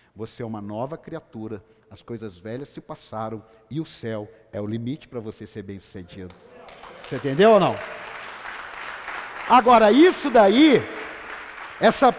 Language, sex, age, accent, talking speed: Portuguese, male, 50-69, Brazilian, 145 wpm